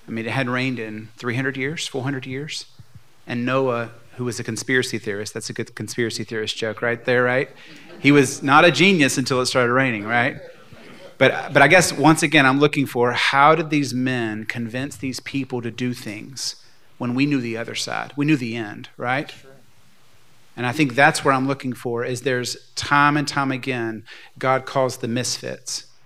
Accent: American